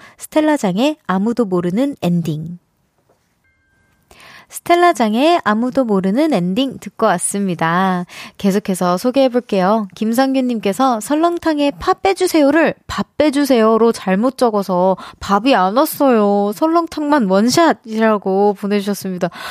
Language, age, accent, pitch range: Korean, 20-39, native, 195-275 Hz